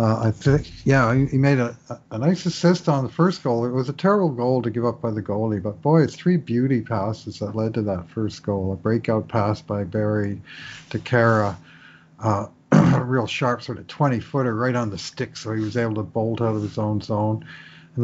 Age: 50-69